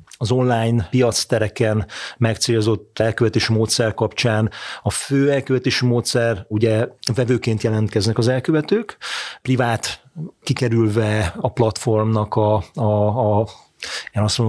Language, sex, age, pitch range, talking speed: Hungarian, male, 30-49, 110-125 Hz, 90 wpm